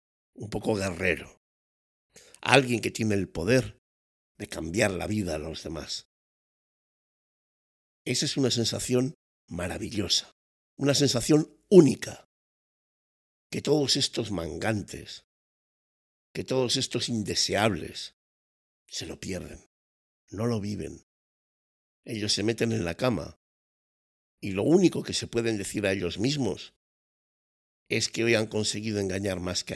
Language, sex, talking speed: Spanish, male, 125 wpm